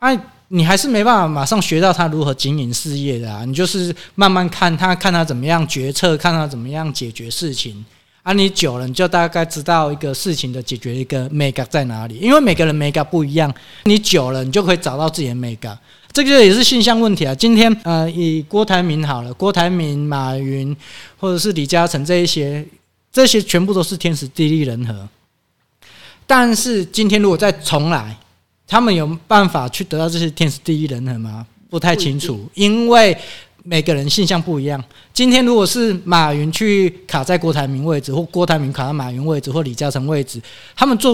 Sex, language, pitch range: male, Chinese, 135-185 Hz